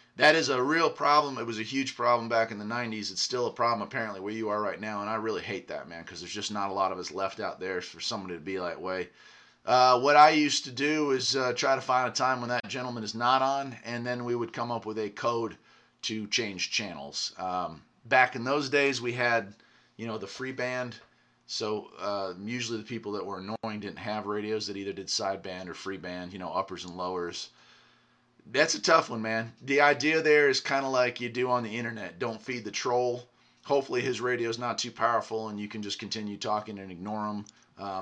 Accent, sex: American, male